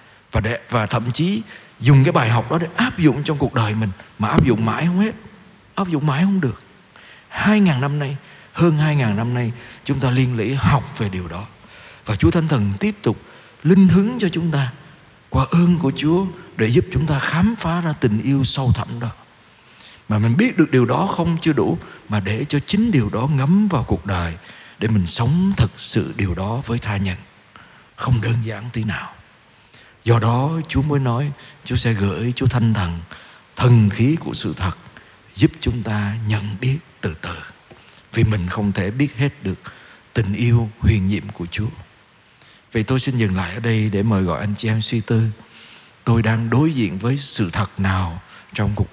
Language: Vietnamese